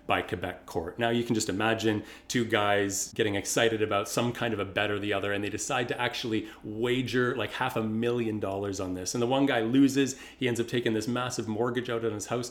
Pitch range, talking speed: 95-120 Hz, 240 wpm